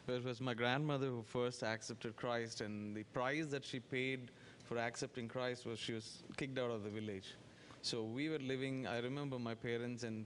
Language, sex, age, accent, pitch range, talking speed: English, male, 20-39, Indian, 115-135 Hz, 205 wpm